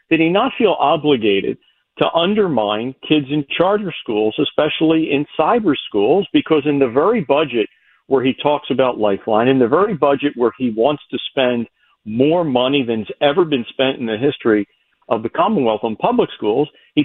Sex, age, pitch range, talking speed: male, 50-69, 115-155 Hz, 175 wpm